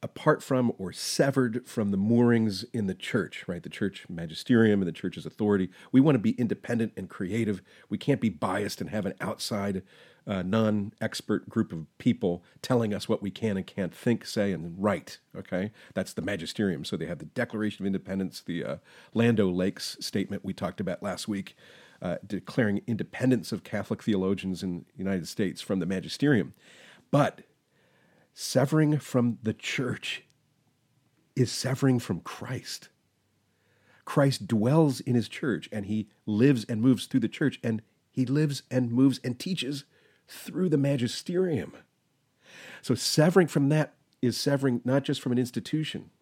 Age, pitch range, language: 40-59, 105-140 Hz, English